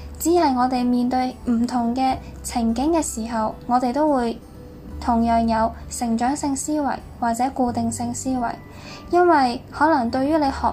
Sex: female